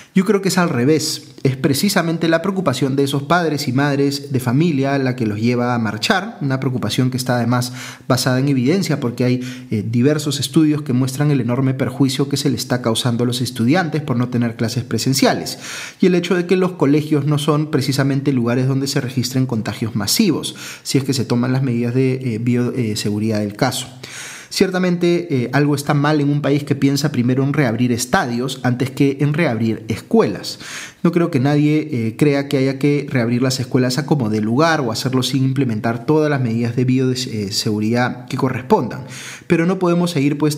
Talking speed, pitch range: 195 wpm, 125-150 Hz